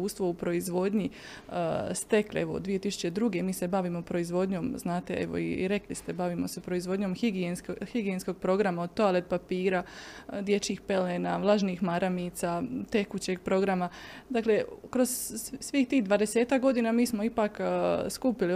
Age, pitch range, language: 20-39, 180-225 Hz, Croatian